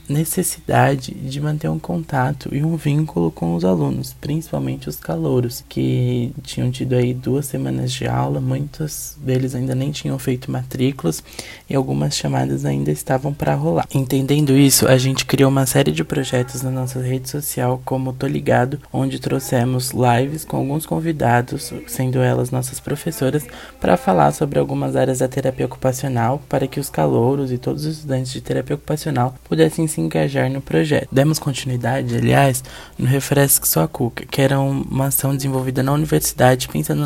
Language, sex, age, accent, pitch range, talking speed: Portuguese, male, 20-39, Brazilian, 125-145 Hz, 165 wpm